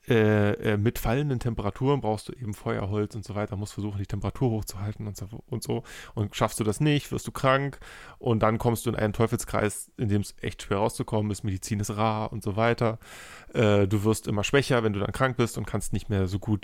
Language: German